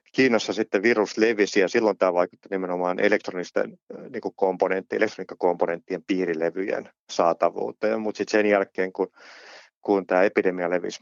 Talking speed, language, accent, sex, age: 125 wpm, Finnish, native, male, 30-49